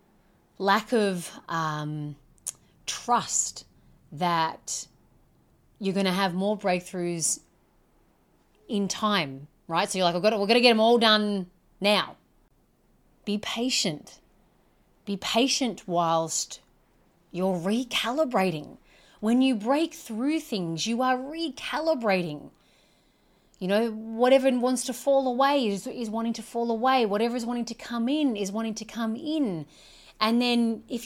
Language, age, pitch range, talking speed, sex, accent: English, 30-49, 180-255 Hz, 135 wpm, female, Australian